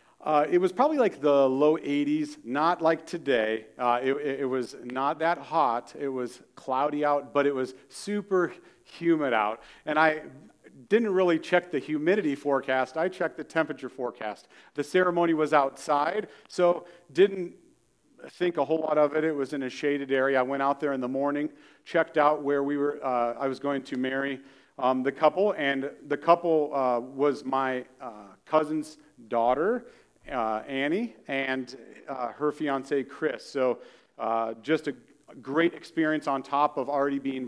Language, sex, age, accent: English, male, 40-59, American